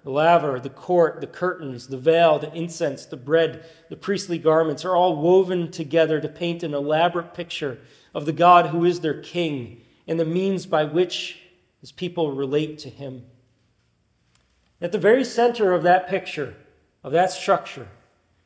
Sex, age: male, 40-59